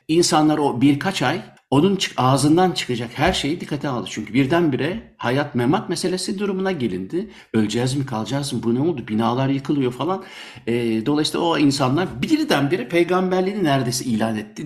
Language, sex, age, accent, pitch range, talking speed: Turkish, male, 60-79, native, 120-175 Hz, 150 wpm